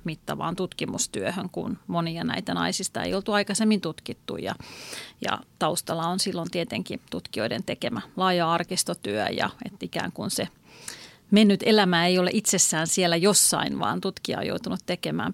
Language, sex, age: Finnish, female, 40-59